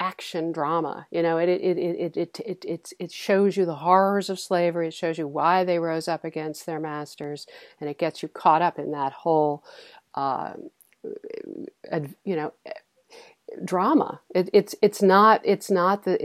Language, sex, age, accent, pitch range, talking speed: English, female, 50-69, American, 160-220 Hz, 175 wpm